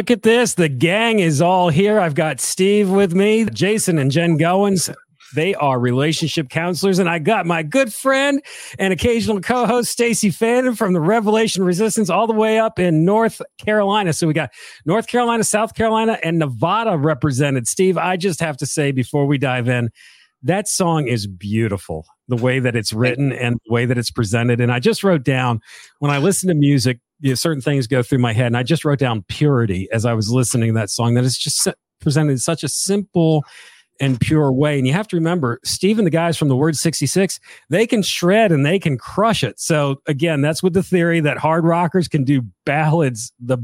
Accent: American